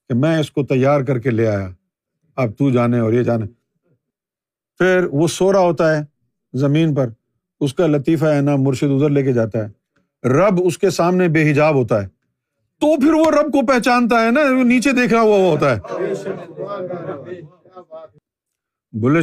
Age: 50-69